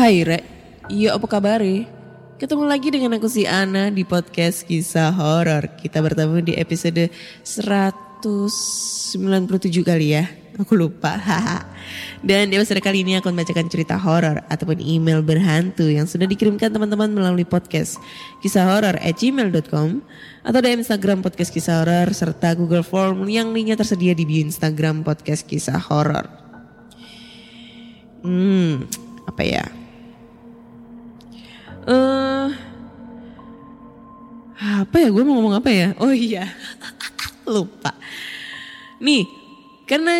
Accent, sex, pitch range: native, female, 170-235 Hz